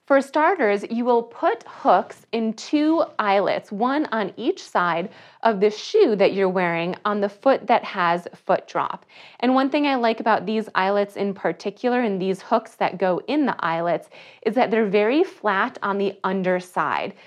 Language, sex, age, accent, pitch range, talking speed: English, female, 30-49, American, 195-255 Hz, 180 wpm